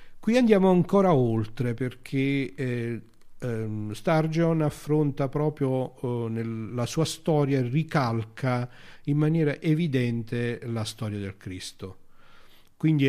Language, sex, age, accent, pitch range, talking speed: Italian, male, 50-69, native, 110-135 Hz, 110 wpm